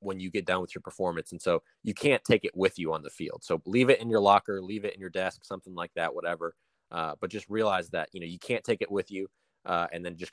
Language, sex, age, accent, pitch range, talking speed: English, male, 20-39, American, 85-110 Hz, 290 wpm